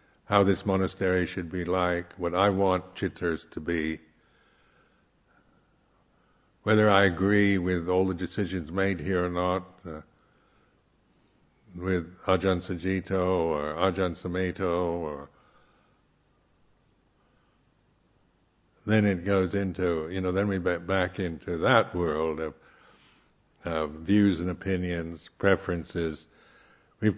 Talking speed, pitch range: 105 wpm, 85-100 Hz